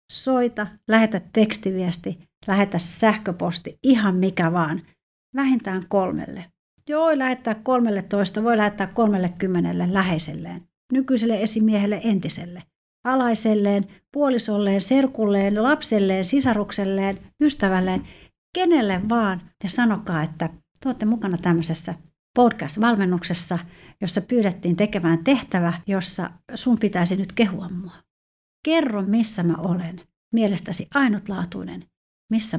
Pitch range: 175-225 Hz